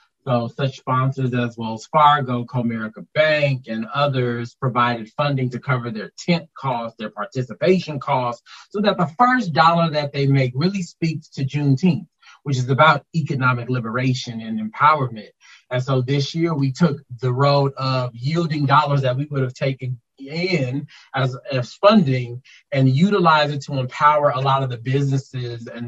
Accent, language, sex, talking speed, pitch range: American, English, male, 160 wpm, 125-150 Hz